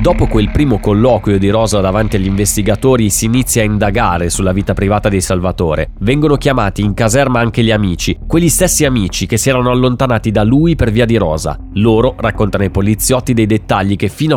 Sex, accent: male, native